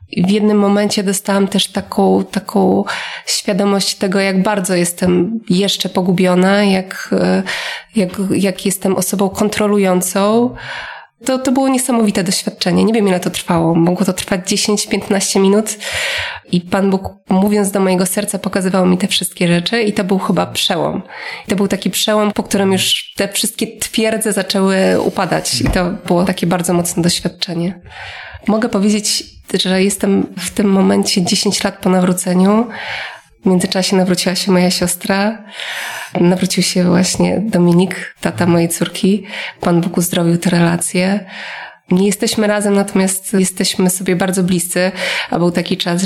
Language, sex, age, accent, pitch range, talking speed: Polish, female, 20-39, native, 180-200 Hz, 150 wpm